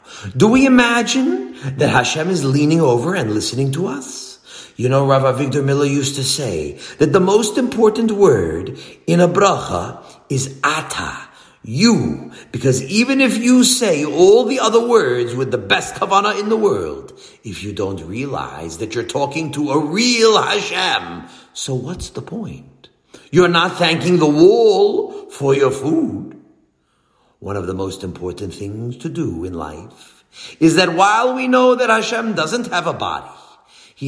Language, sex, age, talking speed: English, male, 50-69, 160 wpm